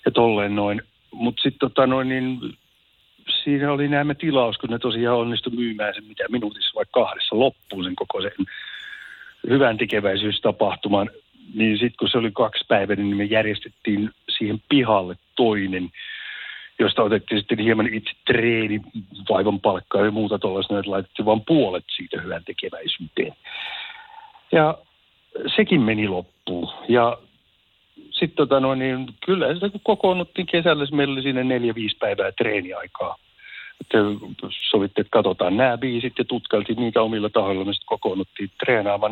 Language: Finnish